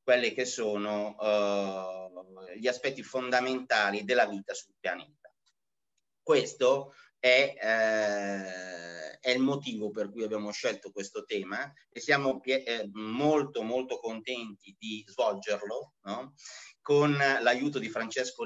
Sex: male